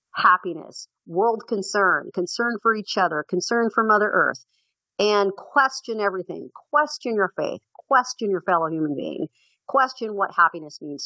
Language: English